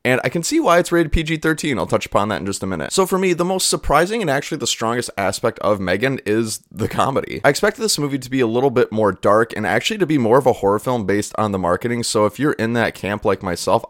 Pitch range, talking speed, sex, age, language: 105-140 Hz, 275 wpm, male, 20-39, English